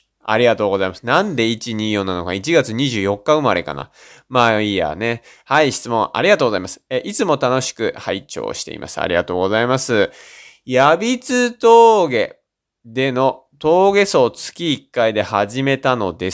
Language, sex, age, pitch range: Japanese, male, 20-39, 100-150 Hz